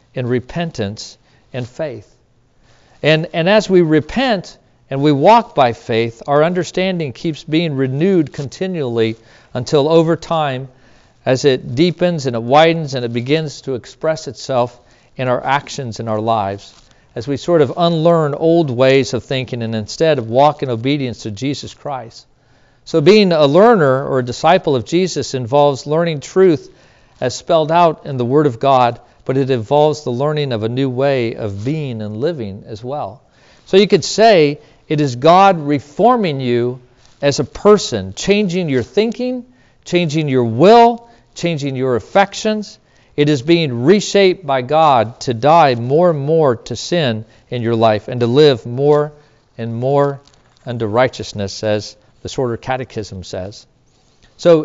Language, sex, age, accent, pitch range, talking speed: English, male, 50-69, American, 120-160 Hz, 160 wpm